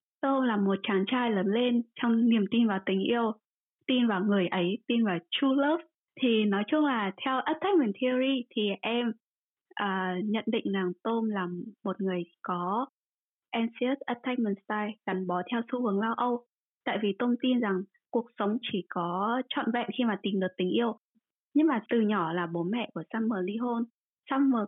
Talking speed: 190 wpm